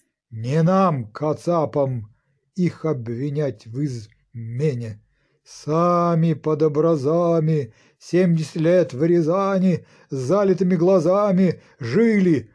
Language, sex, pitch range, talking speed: Ukrainian, male, 140-185 Hz, 85 wpm